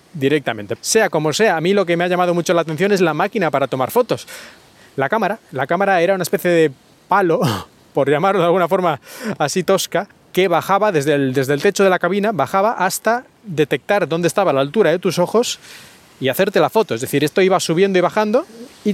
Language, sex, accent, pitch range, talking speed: Spanish, male, Spanish, 150-190 Hz, 215 wpm